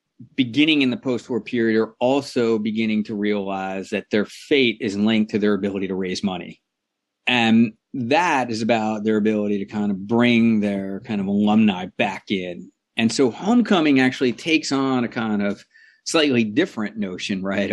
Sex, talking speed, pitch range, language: male, 170 wpm, 105-135 Hz, English